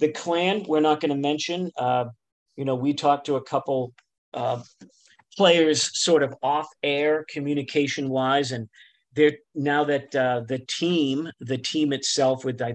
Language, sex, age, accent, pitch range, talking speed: English, male, 40-59, American, 125-145 Hz, 165 wpm